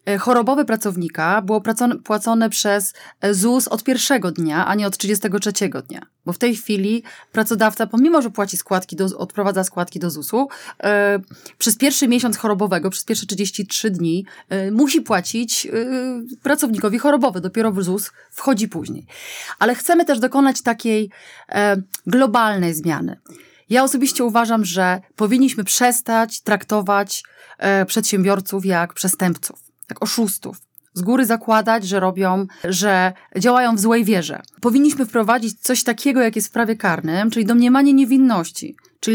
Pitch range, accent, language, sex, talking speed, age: 190-240 Hz, native, Polish, female, 140 wpm, 30-49